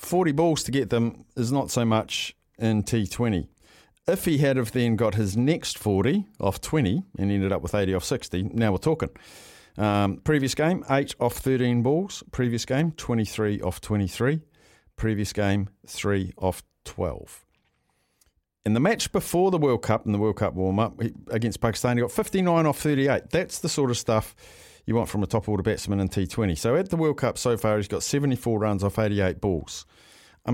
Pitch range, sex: 100-135 Hz, male